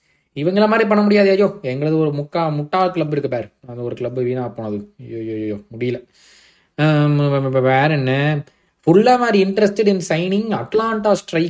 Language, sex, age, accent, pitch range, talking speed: Tamil, male, 20-39, native, 130-185 Hz, 85 wpm